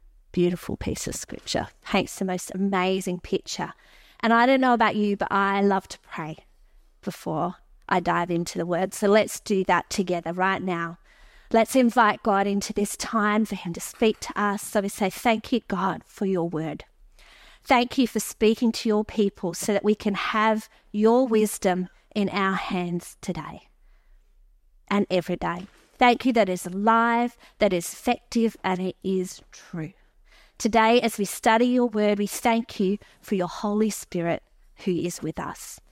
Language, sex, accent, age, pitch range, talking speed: English, female, Australian, 30-49, 185-235 Hz, 175 wpm